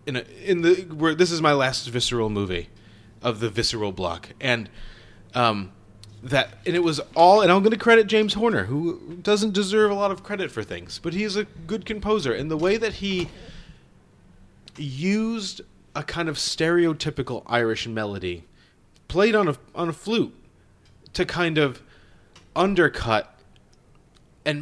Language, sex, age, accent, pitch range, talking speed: English, male, 30-49, American, 110-155 Hz, 160 wpm